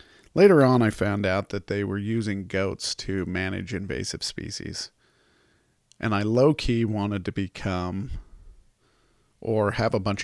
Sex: male